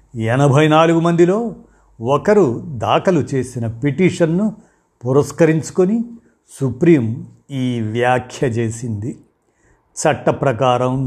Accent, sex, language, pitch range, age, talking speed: native, male, Telugu, 125-160 Hz, 50-69, 70 wpm